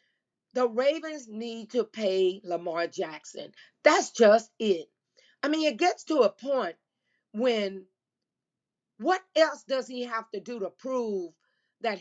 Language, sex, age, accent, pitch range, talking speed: English, female, 40-59, American, 195-260 Hz, 140 wpm